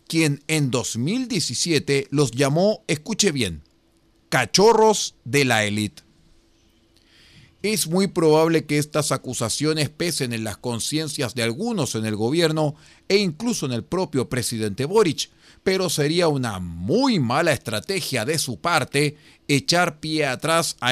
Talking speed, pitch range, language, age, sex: 130 wpm, 120-175 Hz, Spanish, 40-59, male